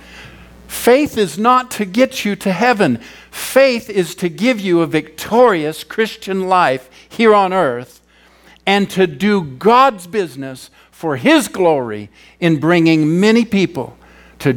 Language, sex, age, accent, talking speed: English, male, 50-69, American, 135 wpm